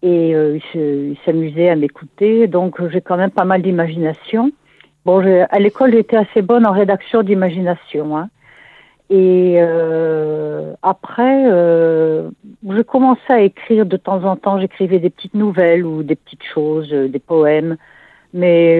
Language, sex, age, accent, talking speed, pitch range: French, female, 60-79, French, 155 wpm, 165-215 Hz